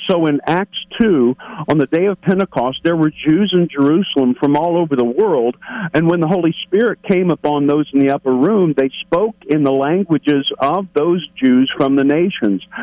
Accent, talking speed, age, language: American, 195 wpm, 50-69, English